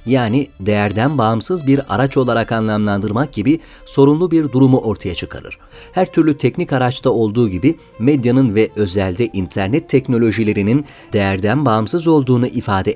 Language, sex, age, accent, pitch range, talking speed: Turkish, male, 40-59, native, 110-140 Hz, 130 wpm